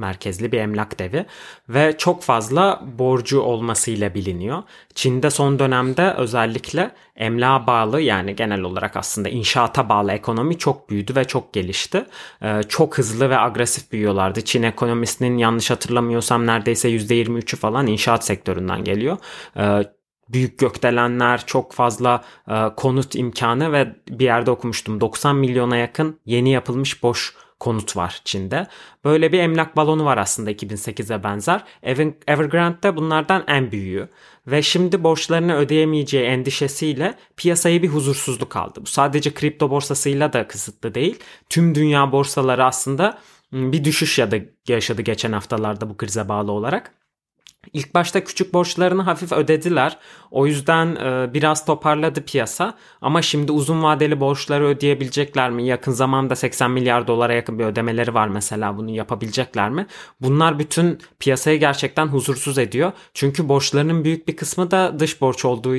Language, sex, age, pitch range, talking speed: Turkish, male, 30-49, 115-150 Hz, 140 wpm